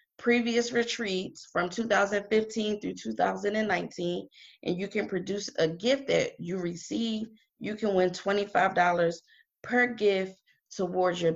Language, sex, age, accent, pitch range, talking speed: English, female, 30-49, American, 185-225 Hz, 120 wpm